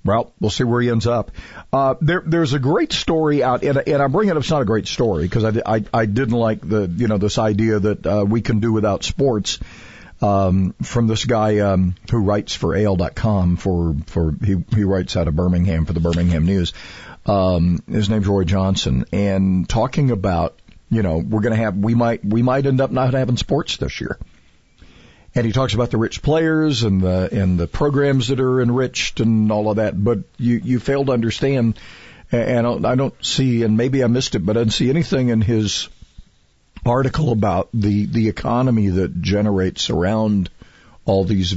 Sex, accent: male, American